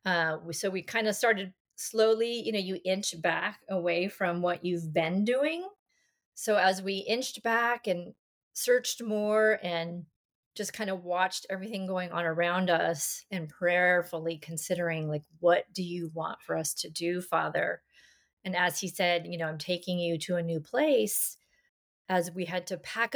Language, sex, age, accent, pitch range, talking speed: English, female, 30-49, American, 175-210 Hz, 175 wpm